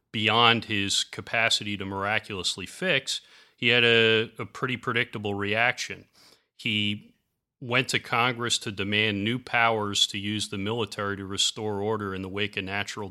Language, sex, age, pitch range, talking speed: English, male, 30-49, 100-115 Hz, 150 wpm